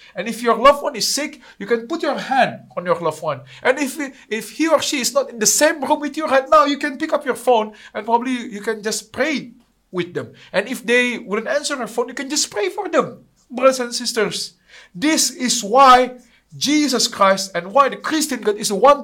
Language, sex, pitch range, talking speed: English, male, 195-265 Hz, 235 wpm